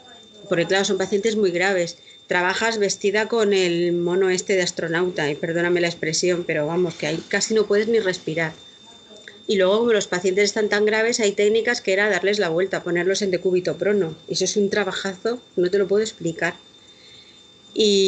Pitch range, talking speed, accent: 175-210 Hz, 185 wpm, Spanish